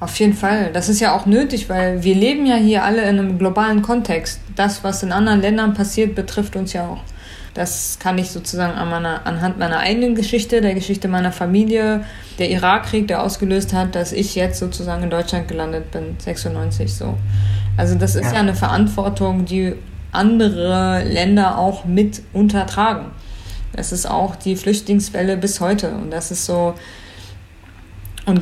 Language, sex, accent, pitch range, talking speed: German, female, German, 175-210 Hz, 165 wpm